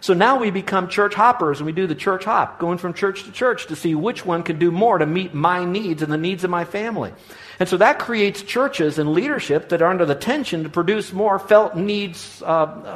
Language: English